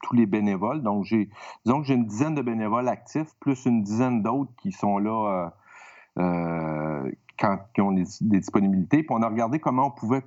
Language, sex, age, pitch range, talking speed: French, male, 50-69, 100-120 Hz, 200 wpm